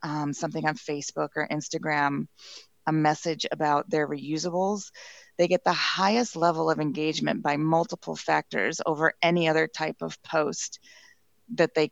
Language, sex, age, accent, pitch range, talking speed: English, female, 30-49, American, 155-180 Hz, 145 wpm